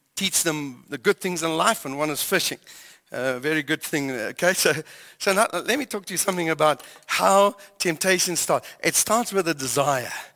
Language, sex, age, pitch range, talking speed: English, male, 60-79, 155-195 Hz, 190 wpm